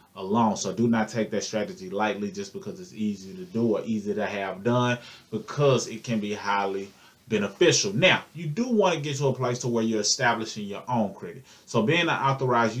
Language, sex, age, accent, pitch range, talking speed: English, male, 20-39, American, 105-130 Hz, 210 wpm